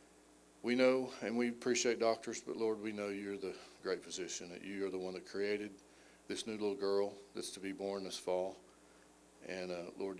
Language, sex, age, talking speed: English, male, 40-59, 200 wpm